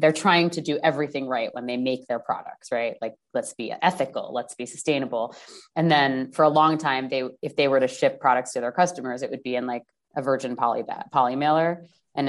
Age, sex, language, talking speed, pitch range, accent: 20-39, female, English, 220 wpm, 125-150 Hz, American